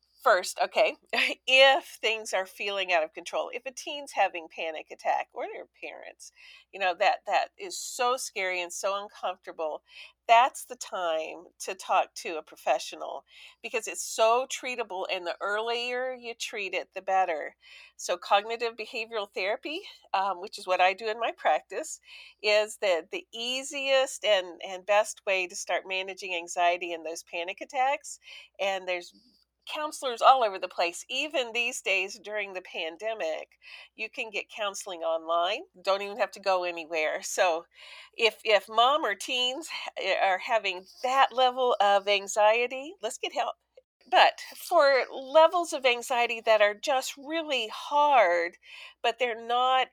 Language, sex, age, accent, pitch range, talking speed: English, female, 50-69, American, 190-275 Hz, 155 wpm